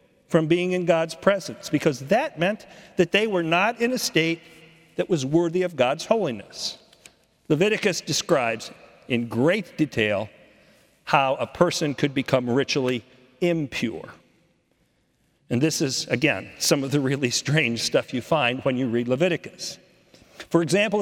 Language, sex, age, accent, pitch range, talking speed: English, male, 50-69, American, 140-195 Hz, 145 wpm